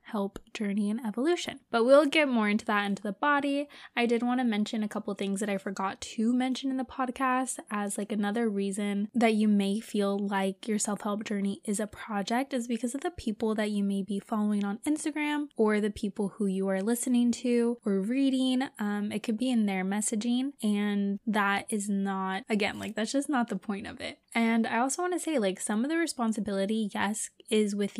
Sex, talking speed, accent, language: female, 215 wpm, American, English